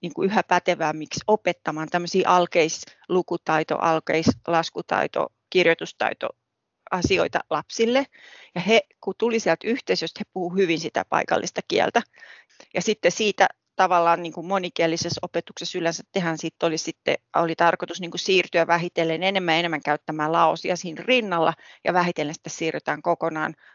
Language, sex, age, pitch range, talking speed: Finnish, female, 30-49, 170-205 Hz, 135 wpm